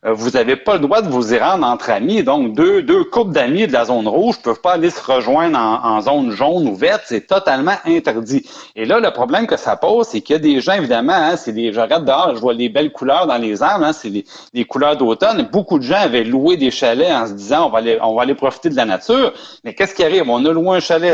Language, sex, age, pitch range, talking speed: French, male, 40-59, 125-185 Hz, 275 wpm